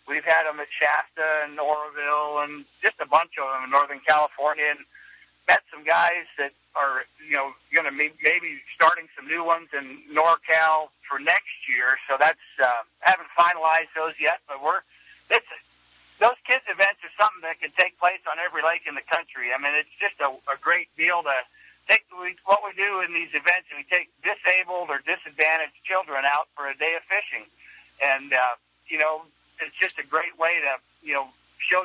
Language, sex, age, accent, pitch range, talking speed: English, male, 60-79, American, 145-175 Hz, 195 wpm